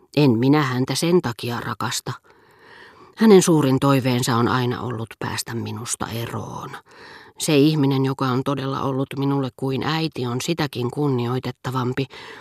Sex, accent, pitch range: female, native, 120-155 Hz